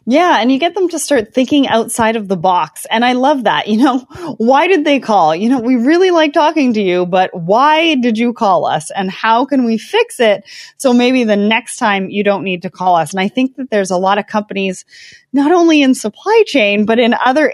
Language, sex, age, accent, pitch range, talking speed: English, female, 30-49, American, 205-280 Hz, 240 wpm